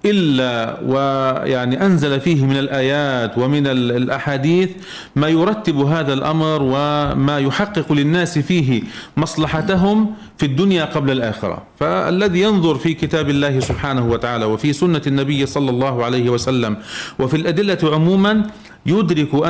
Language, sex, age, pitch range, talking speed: Arabic, male, 40-59, 130-160 Hz, 120 wpm